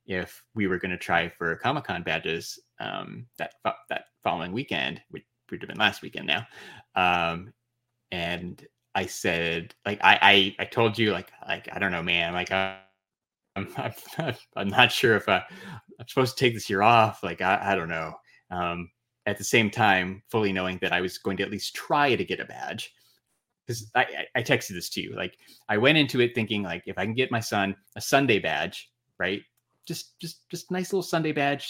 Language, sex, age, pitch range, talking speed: English, male, 20-39, 90-125 Hz, 205 wpm